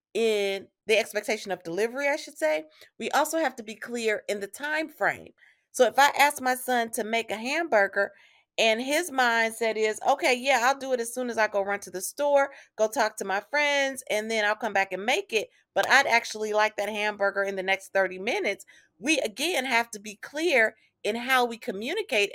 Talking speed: 215 wpm